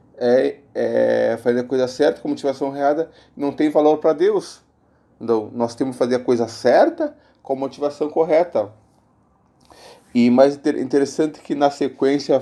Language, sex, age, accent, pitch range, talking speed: Portuguese, male, 20-39, Brazilian, 115-145 Hz, 155 wpm